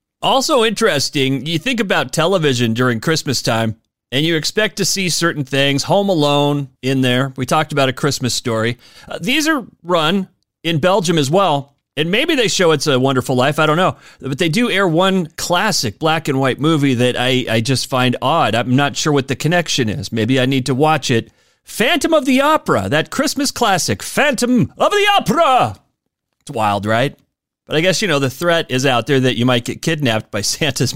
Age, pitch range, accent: 40-59, 125-190 Hz, American